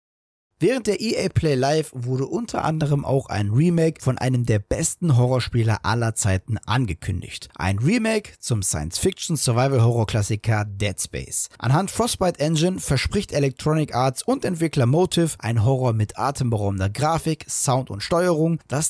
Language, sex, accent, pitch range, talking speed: German, male, German, 105-155 Hz, 135 wpm